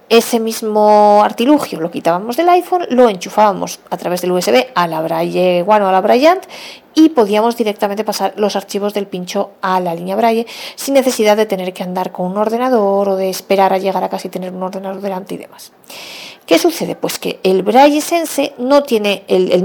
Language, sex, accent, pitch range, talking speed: Spanish, female, Spanish, 185-245 Hz, 200 wpm